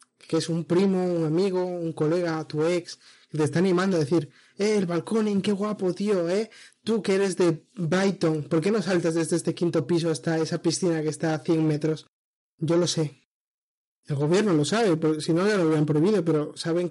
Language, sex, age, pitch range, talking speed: Spanish, male, 20-39, 155-175 Hz, 215 wpm